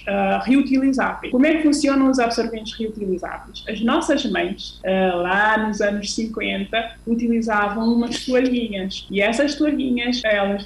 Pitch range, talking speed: 205-255 Hz, 135 wpm